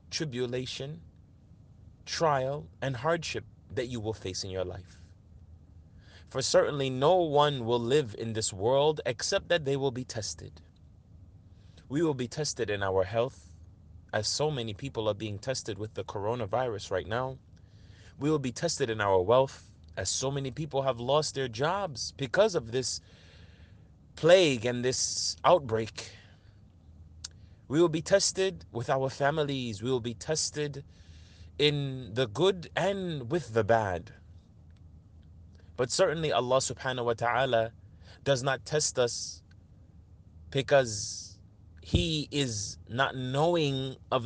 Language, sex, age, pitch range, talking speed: English, male, 30-49, 90-140 Hz, 135 wpm